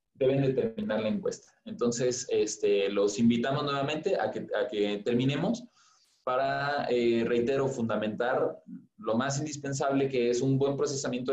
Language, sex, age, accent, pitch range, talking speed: Spanish, male, 20-39, Mexican, 120-150 Hz, 145 wpm